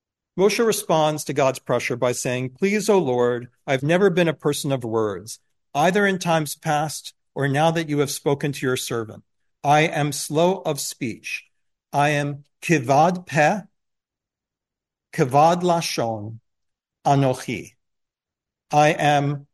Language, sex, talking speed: English, male, 135 wpm